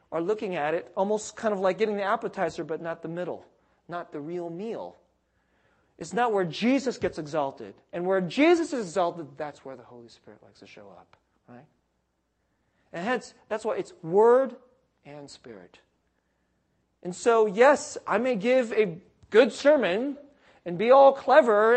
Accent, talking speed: American, 170 wpm